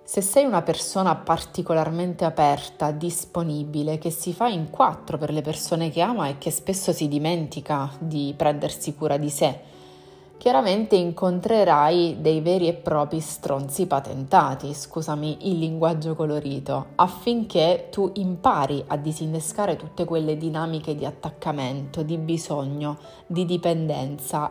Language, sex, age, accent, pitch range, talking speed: Italian, female, 20-39, native, 150-175 Hz, 130 wpm